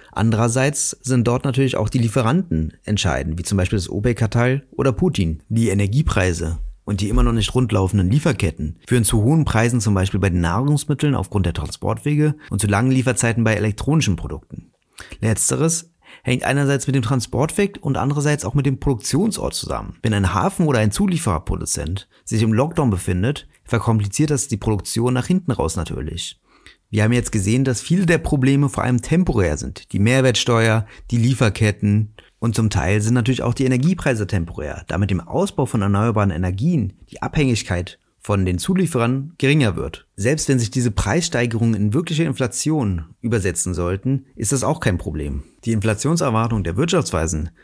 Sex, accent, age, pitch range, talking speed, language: male, German, 30-49, 100-140 Hz, 165 wpm, German